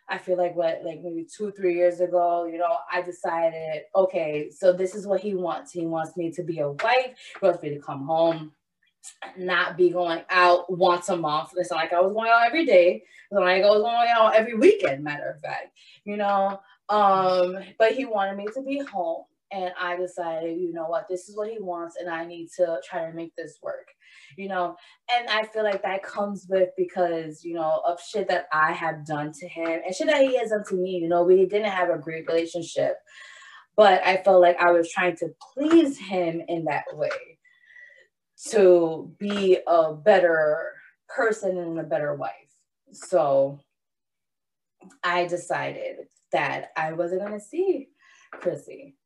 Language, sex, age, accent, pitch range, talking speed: English, female, 20-39, American, 170-205 Hz, 195 wpm